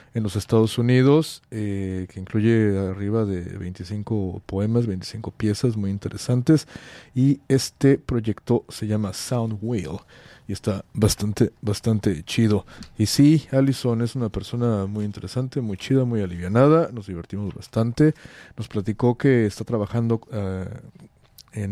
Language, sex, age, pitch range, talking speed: English, male, 40-59, 100-125 Hz, 130 wpm